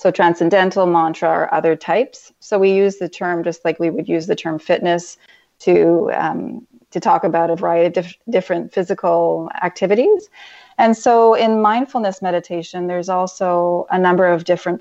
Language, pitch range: English, 175-195 Hz